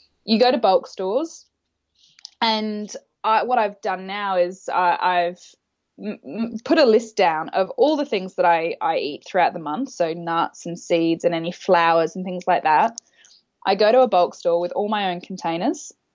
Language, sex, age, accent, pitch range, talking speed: English, female, 10-29, Australian, 180-250 Hz, 195 wpm